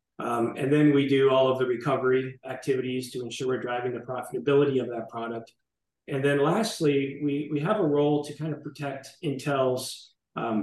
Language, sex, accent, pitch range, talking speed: English, male, American, 120-140 Hz, 185 wpm